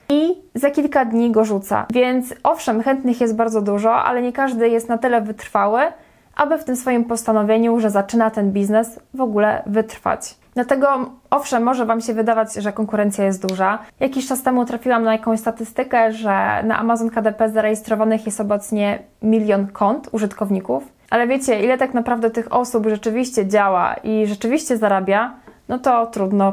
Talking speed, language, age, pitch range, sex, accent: 165 wpm, Polish, 20-39, 210-245 Hz, female, native